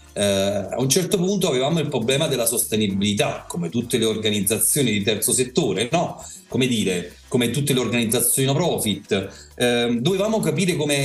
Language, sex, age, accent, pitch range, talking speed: Italian, male, 40-59, native, 115-150 Hz, 150 wpm